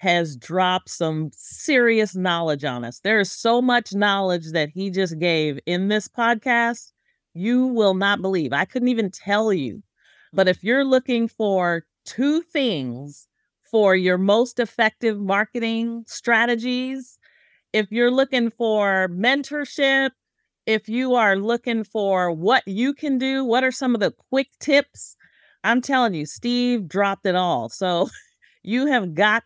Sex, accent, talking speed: female, American, 150 wpm